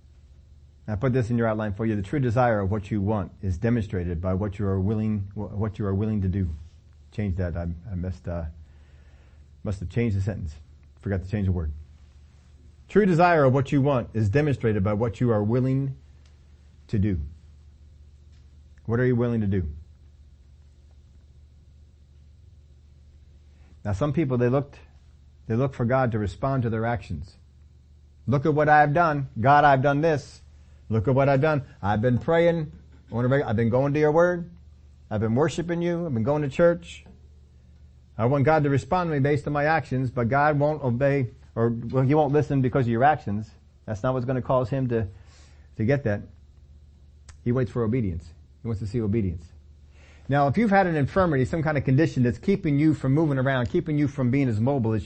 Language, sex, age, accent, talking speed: English, male, 40-59, American, 195 wpm